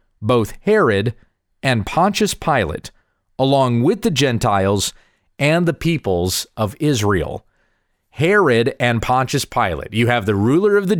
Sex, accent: male, American